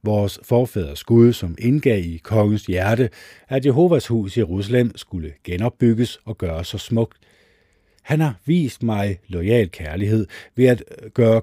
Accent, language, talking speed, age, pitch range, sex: native, Danish, 145 wpm, 50-69, 95-120 Hz, male